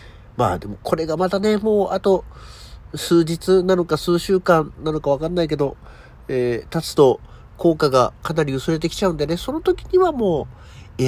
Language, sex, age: Japanese, male, 50-69